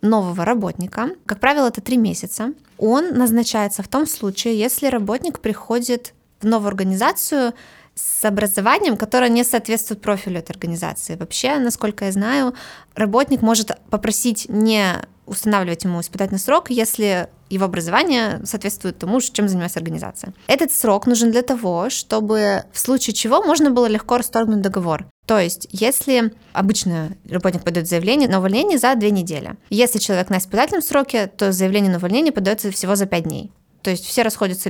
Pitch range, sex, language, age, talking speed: 190-245 Hz, female, Russian, 20-39, 155 wpm